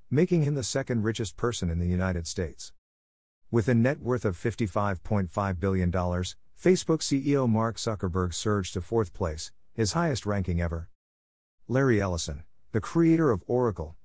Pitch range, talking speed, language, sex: 90-115 Hz, 150 wpm, English, male